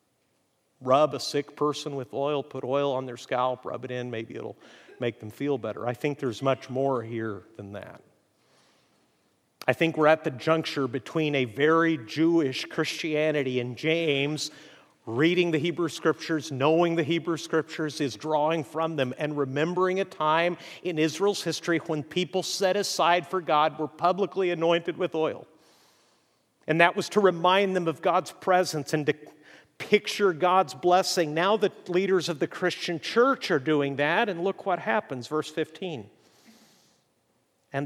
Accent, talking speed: American, 160 wpm